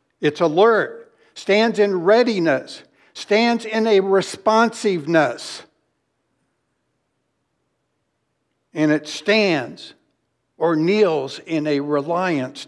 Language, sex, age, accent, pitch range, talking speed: English, male, 60-79, American, 160-215 Hz, 80 wpm